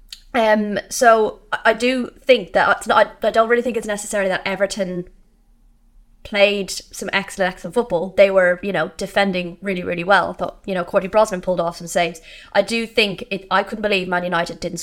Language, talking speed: English, 200 wpm